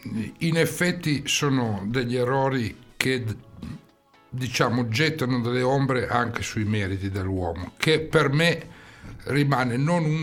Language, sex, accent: Italian, male, native